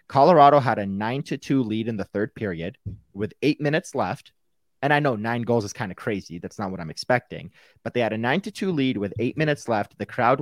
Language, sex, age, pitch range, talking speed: English, male, 30-49, 105-140 Hz, 250 wpm